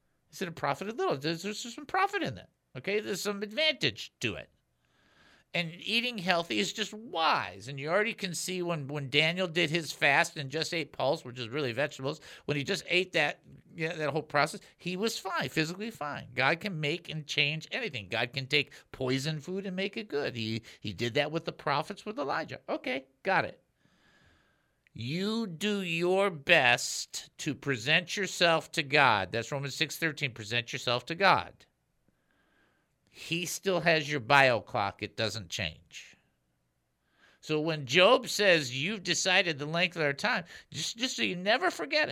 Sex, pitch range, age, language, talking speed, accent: male, 135-185 Hz, 50-69, English, 180 wpm, American